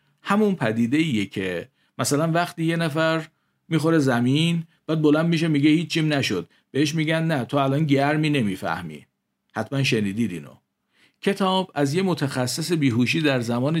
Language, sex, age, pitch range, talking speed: Persian, male, 50-69, 115-155 Hz, 140 wpm